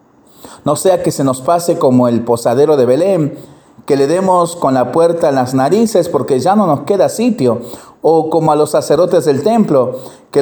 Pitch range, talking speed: 125-175 Hz, 195 wpm